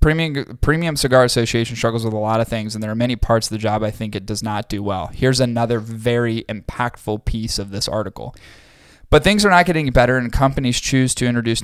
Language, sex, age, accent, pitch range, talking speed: English, male, 20-39, American, 110-125 Hz, 225 wpm